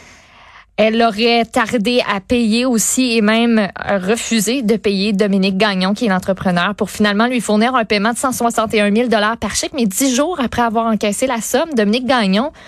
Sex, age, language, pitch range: female, 20-39, French, 200-240 Hz